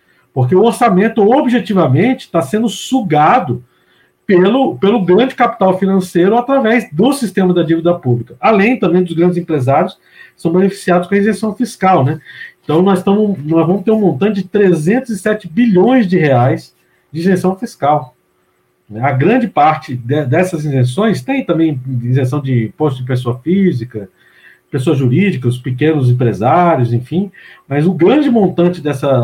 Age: 50-69